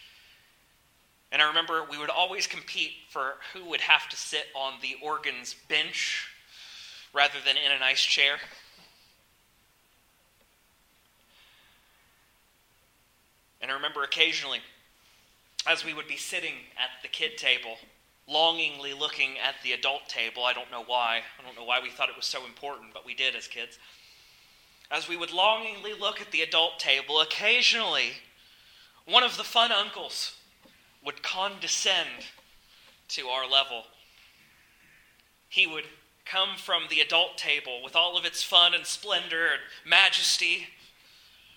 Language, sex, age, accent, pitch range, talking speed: English, male, 30-49, American, 130-170 Hz, 140 wpm